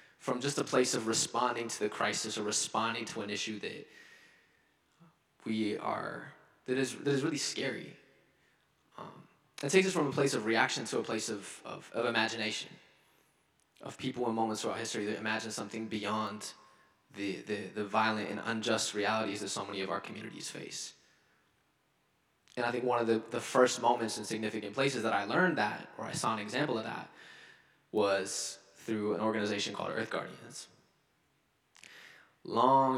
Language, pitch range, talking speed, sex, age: English, 105-125 Hz, 170 wpm, male, 20-39